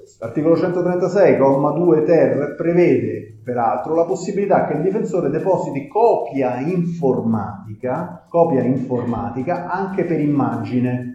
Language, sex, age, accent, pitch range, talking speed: Italian, male, 30-49, native, 120-180 Hz, 90 wpm